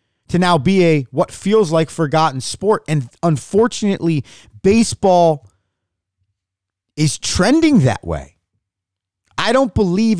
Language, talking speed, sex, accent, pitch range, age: English, 110 wpm, male, American, 105-160 Hz, 30-49